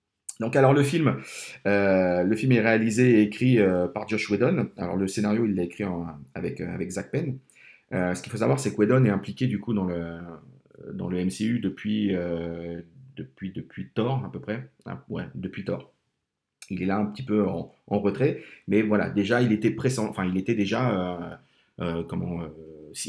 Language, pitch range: French, 90-120 Hz